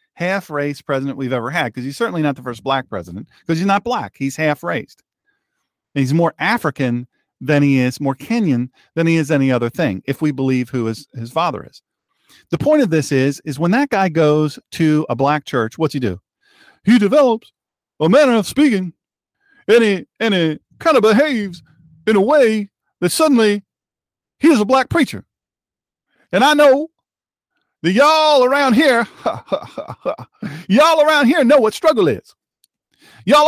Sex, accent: male, American